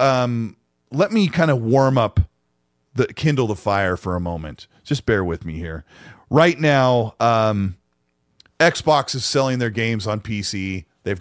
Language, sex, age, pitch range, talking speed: English, male, 40-59, 120-165 Hz, 160 wpm